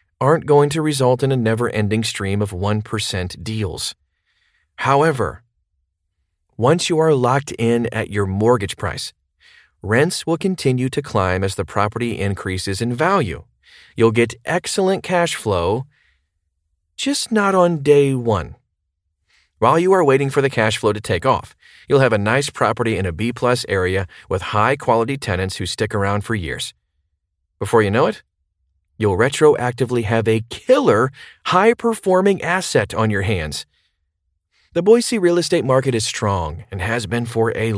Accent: American